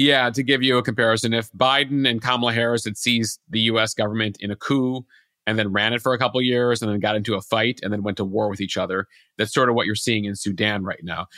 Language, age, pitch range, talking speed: English, 40-59, 110-130 Hz, 275 wpm